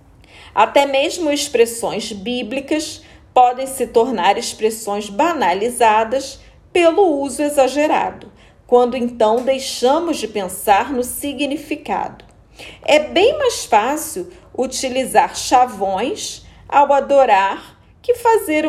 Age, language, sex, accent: 40-59, Portuguese, female, Brazilian